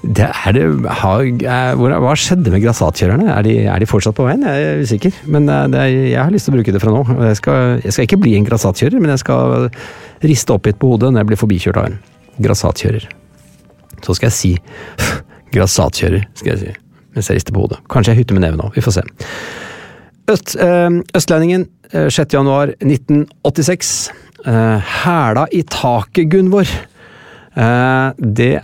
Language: English